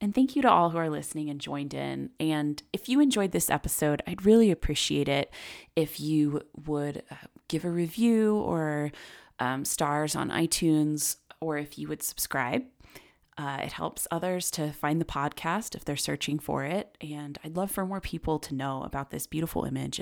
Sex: female